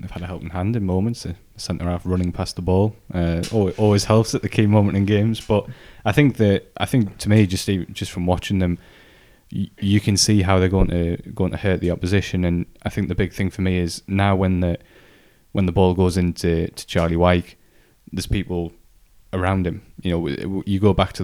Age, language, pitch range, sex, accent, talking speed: 20-39, English, 85-95 Hz, male, British, 230 wpm